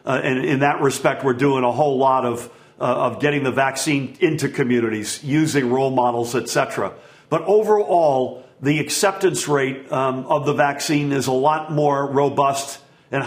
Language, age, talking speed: English, 50-69, 165 wpm